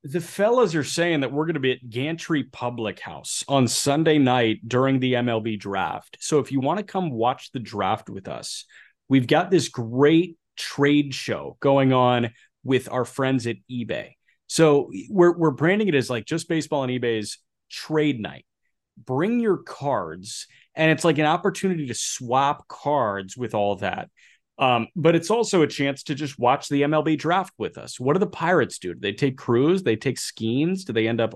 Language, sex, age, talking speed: English, male, 30-49, 195 wpm